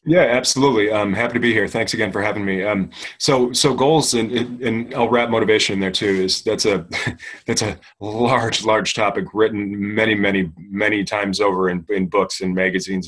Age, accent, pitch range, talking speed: 30-49, American, 95-110 Hz, 195 wpm